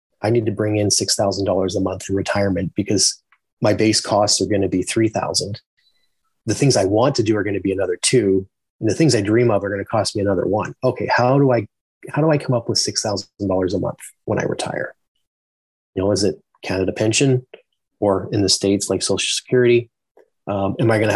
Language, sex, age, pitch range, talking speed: English, male, 30-49, 100-120 Hz, 220 wpm